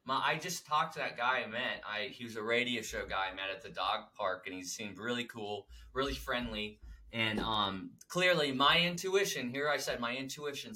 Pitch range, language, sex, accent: 115-160 Hz, English, male, American